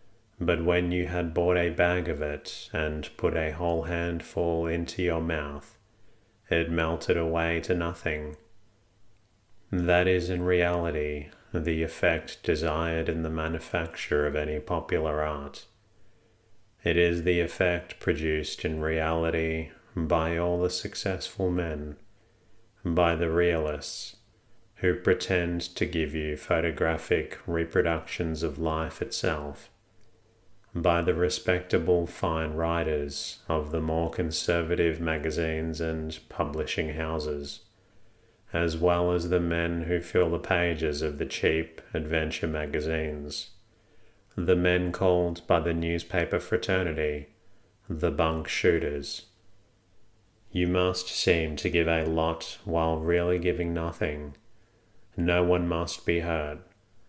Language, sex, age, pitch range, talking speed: English, male, 40-59, 80-95 Hz, 120 wpm